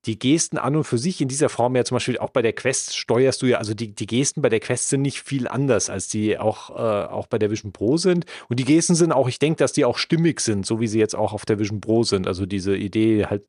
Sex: male